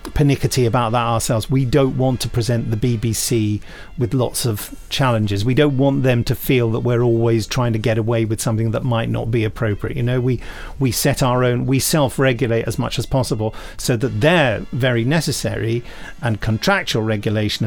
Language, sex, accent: English, male, British